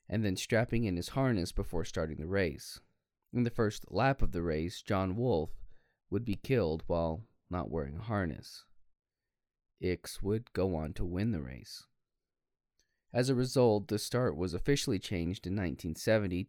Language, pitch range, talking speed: English, 85-115 Hz, 165 wpm